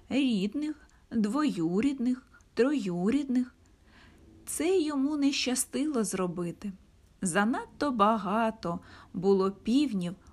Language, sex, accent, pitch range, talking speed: Ukrainian, female, native, 195-280 Hz, 70 wpm